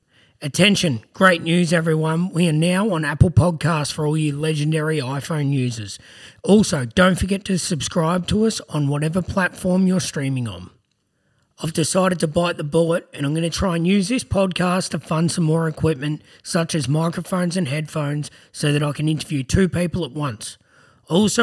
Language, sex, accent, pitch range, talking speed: English, male, Australian, 155-205 Hz, 180 wpm